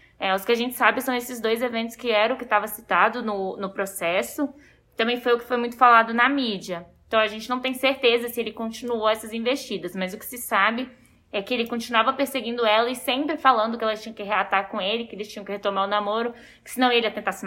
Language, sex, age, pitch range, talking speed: Portuguese, female, 10-29, 205-250 Hz, 245 wpm